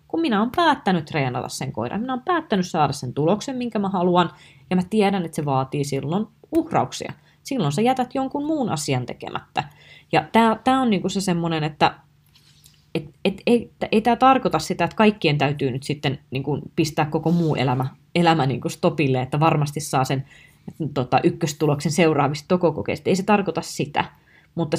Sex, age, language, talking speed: female, 20-39, Finnish, 150 wpm